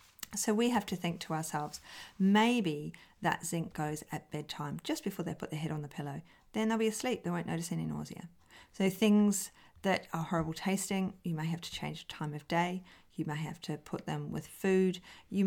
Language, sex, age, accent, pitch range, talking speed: English, female, 40-59, Australian, 155-195 Hz, 215 wpm